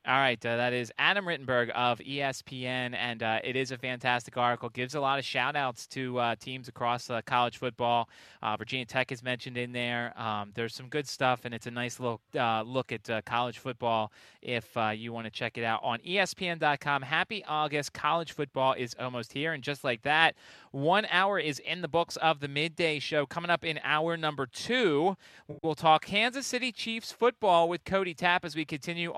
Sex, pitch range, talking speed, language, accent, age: male, 120-165 Hz, 210 wpm, English, American, 30-49